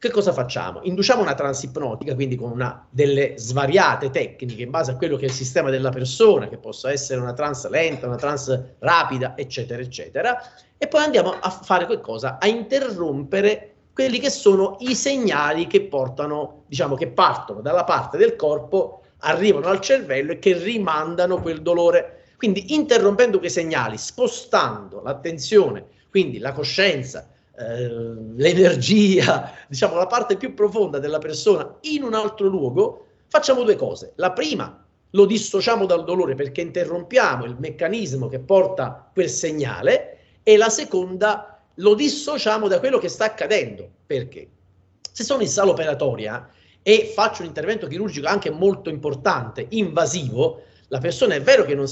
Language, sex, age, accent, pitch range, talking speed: Italian, male, 40-59, native, 140-220 Hz, 155 wpm